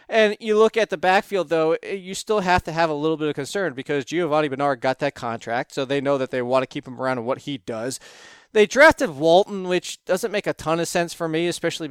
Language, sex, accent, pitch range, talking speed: English, male, American, 145-185 Hz, 250 wpm